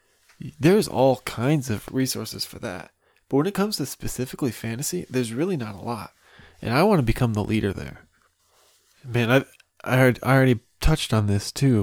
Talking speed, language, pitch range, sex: 190 wpm, English, 105-130 Hz, male